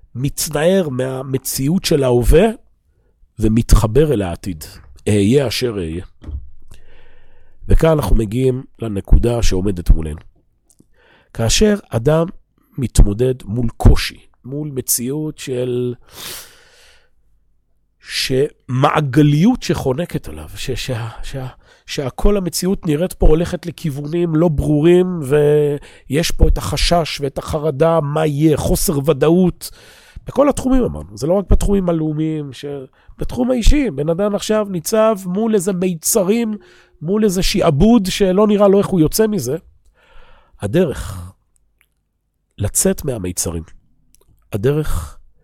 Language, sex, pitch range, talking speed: Hebrew, male, 105-175 Hz, 105 wpm